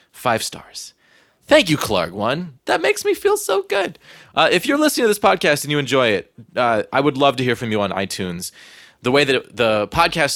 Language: English